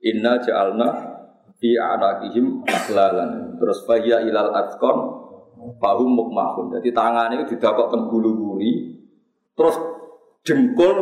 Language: Indonesian